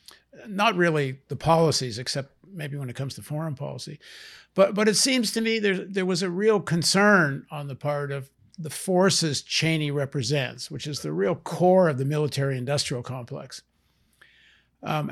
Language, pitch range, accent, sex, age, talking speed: English, 145-185 Hz, American, male, 60-79, 165 wpm